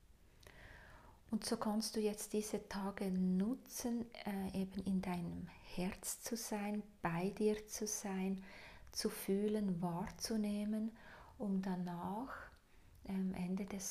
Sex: female